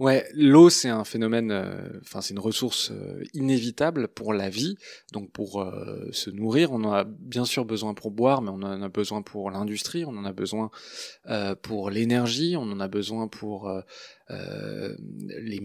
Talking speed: 190 wpm